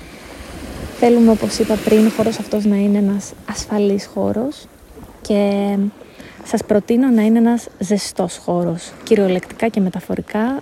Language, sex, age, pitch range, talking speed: Greek, female, 20-39, 200-245 Hz, 125 wpm